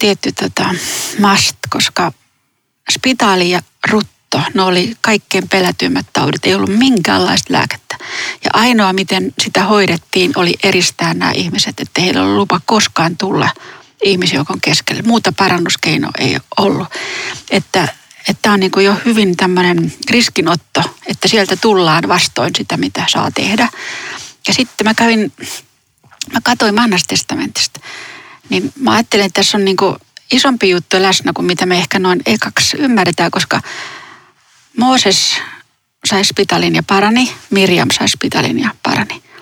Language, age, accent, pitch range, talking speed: Finnish, 30-49, native, 190-245 Hz, 135 wpm